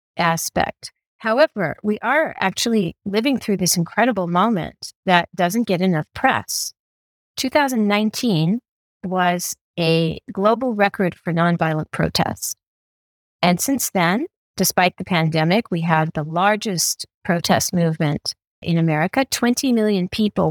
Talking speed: 115 wpm